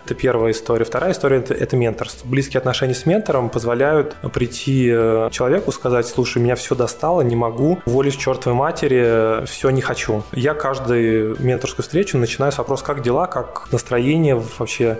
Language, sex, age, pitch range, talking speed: Russian, male, 20-39, 115-135 Hz, 165 wpm